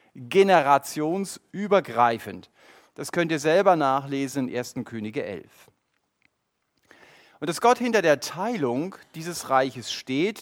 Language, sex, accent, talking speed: German, male, German, 110 wpm